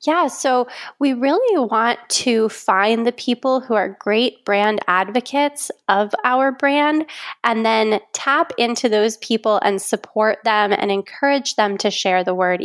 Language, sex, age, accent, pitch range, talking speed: English, female, 20-39, American, 200-240 Hz, 155 wpm